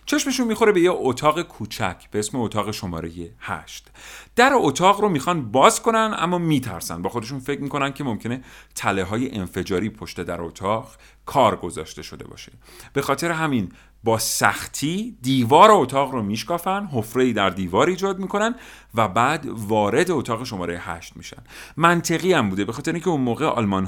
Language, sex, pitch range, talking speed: Persian, male, 95-140 Hz, 165 wpm